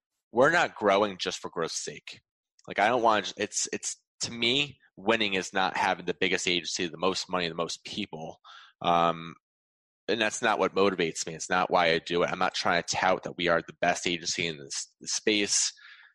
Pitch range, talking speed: 90-115 Hz, 210 wpm